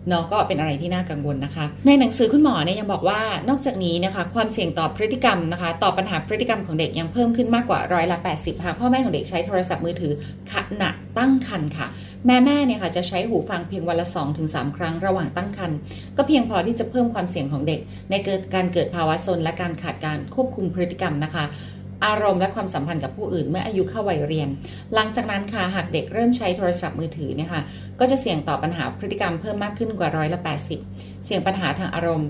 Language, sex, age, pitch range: Thai, female, 30-49, 155-200 Hz